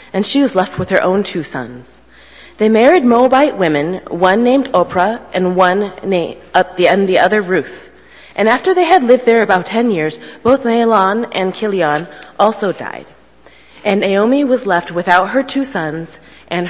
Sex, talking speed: female, 165 wpm